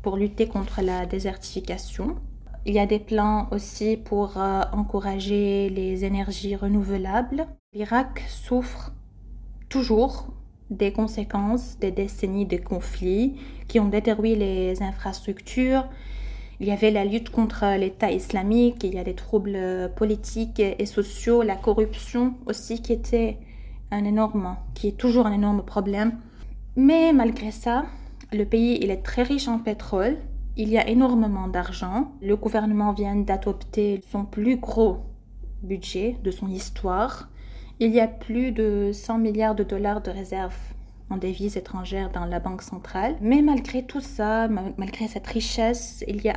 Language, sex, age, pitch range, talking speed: French, female, 20-39, 195-230 Hz, 150 wpm